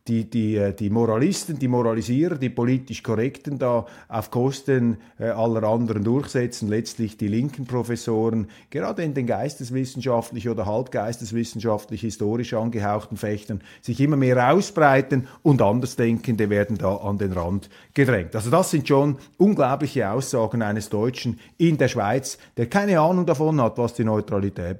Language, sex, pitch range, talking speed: German, male, 110-140 Hz, 145 wpm